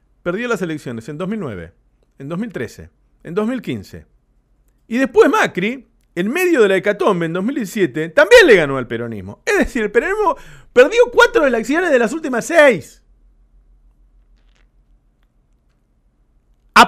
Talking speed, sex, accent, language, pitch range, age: 130 wpm, male, Argentinian, Spanish, 175-265 Hz, 50-69